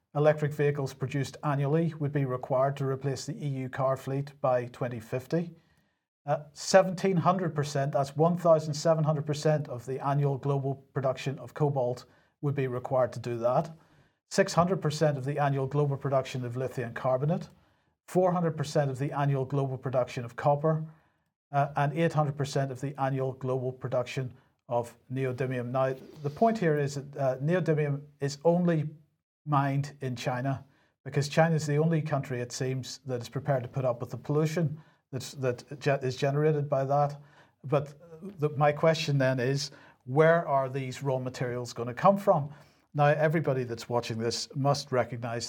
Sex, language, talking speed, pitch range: male, English, 150 wpm, 130-150 Hz